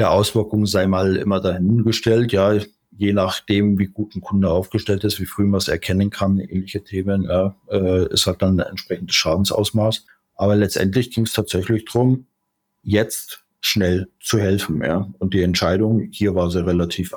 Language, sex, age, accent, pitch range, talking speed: German, male, 50-69, German, 90-105 Hz, 170 wpm